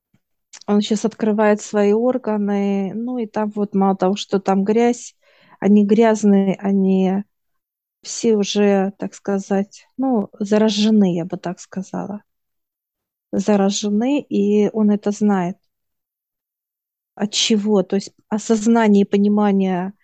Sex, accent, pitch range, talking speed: female, native, 195-220 Hz, 115 wpm